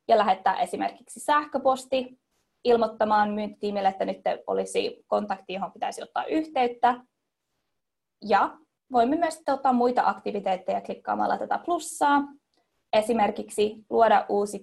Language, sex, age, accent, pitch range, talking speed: Finnish, female, 20-39, native, 215-285 Hz, 105 wpm